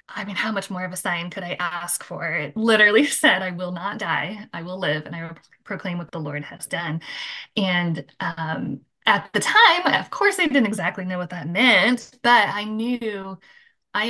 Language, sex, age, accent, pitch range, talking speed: English, female, 10-29, American, 175-225 Hz, 210 wpm